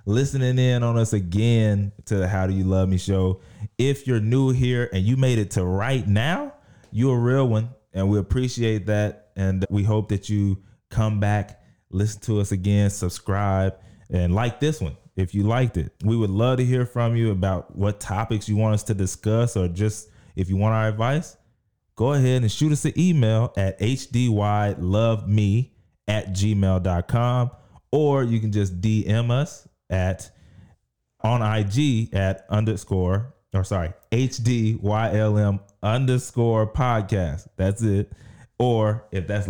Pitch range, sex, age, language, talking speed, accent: 95-115 Hz, male, 20-39, English, 160 wpm, American